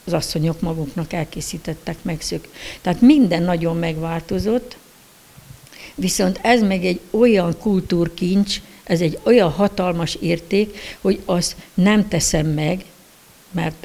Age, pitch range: 60-79, 160-190 Hz